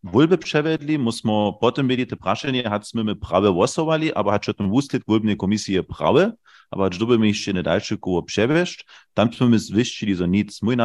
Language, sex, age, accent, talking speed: German, male, 30-49, German, 190 wpm